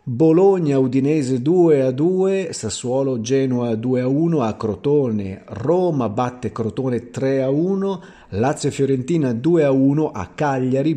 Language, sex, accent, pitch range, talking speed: Italian, male, native, 110-150 Hz, 135 wpm